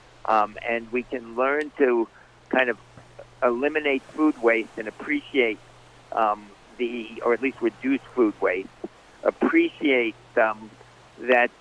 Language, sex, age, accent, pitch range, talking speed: English, male, 50-69, American, 120-140 Hz, 125 wpm